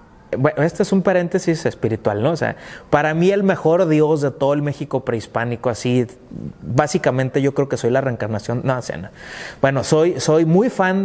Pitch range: 135-160 Hz